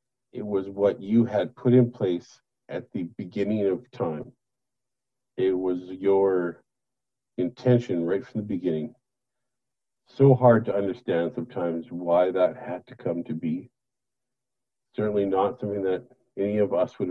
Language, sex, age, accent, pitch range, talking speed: English, male, 50-69, American, 100-125 Hz, 145 wpm